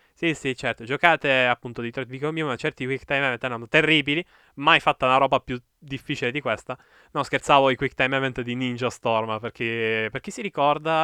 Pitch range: 120-160 Hz